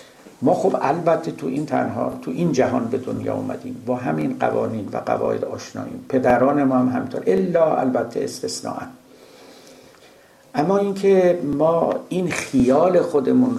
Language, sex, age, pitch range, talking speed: Persian, male, 60-79, 120-140 Hz, 140 wpm